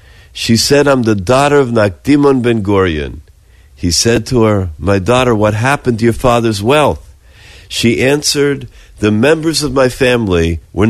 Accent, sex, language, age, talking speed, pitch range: American, male, English, 50-69, 160 wpm, 95-130 Hz